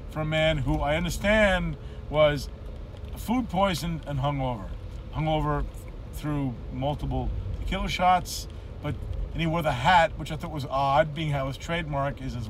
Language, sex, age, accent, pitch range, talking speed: English, male, 50-69, American, 105-155 Hz, 155 wpm